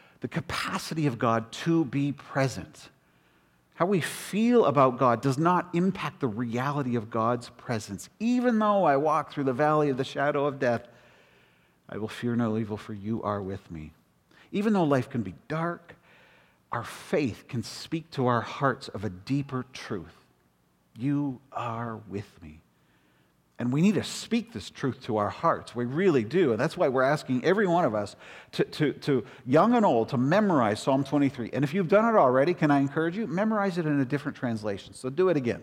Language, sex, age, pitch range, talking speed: English, male, 50-69, 115-155 Hz, 190 wpm